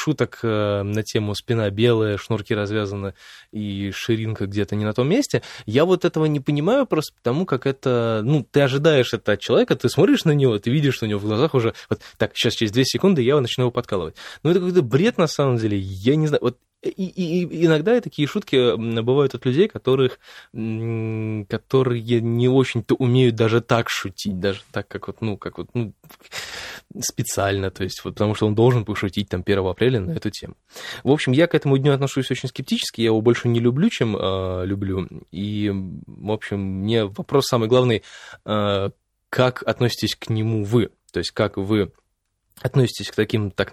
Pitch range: 105-135 Hz